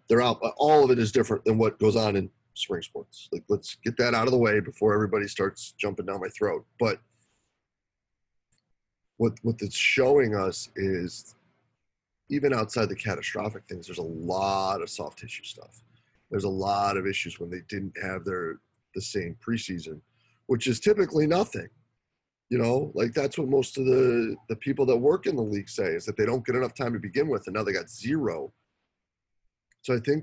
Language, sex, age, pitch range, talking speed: English, male, 30-49, 100-125 Hz, 195 wpm